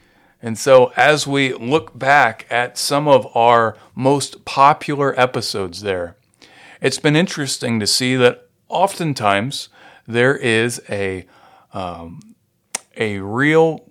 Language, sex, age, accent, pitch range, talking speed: English, male, 40-59, American, 105-130 Hz, 115 wpm